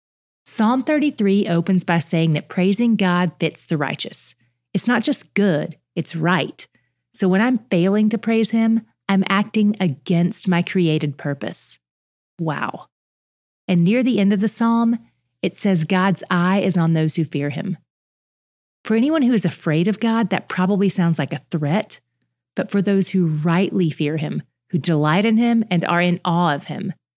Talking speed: 170 wpm